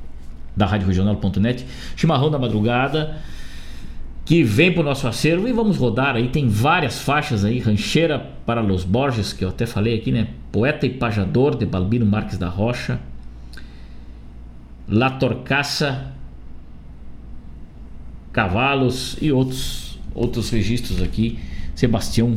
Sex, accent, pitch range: male, Brazilian, 100-145 Hz